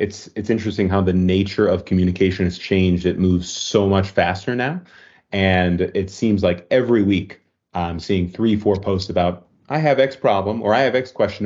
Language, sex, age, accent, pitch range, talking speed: English, male, 30-49, American, 95-120 Hz, 195 wpm